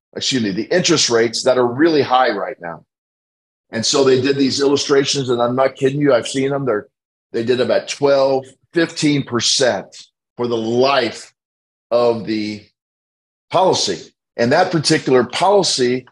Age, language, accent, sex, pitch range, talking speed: 40-59, English, American, male, 120-150 Hz, 155 wpm